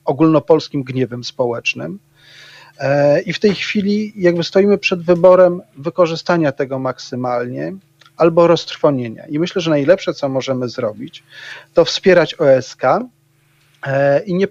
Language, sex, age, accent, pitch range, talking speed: Polish, male, 40-59, native, 135-180 Hz, 115 wpm